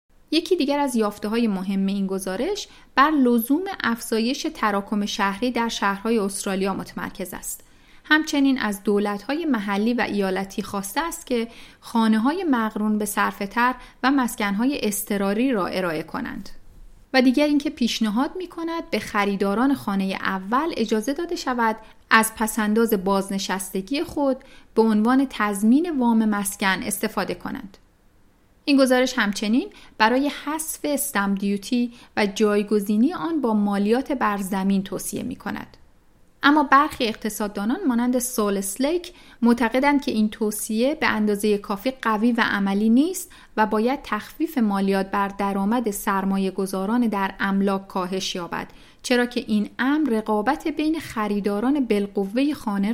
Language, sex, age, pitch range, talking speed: Persian, female, 30-49, 205-260 Hz, 125 wpm